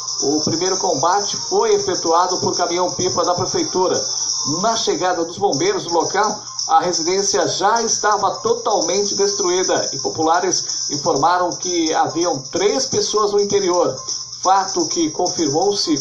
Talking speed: 125 wpm